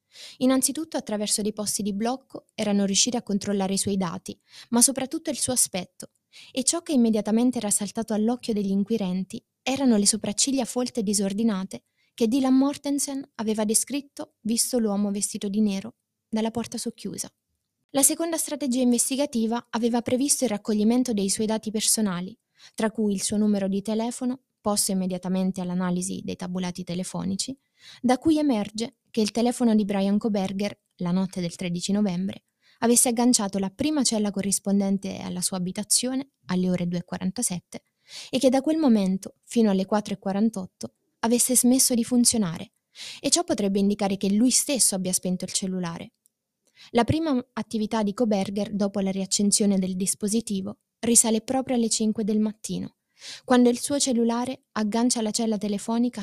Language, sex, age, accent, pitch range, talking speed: Italian, female, 20-39, native, 195-245 Hz, 155 wpm